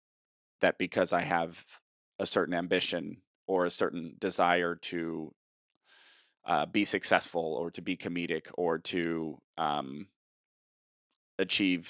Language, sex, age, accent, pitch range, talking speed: English, male, 30-49, American, 85-100 Hz, 115 wpm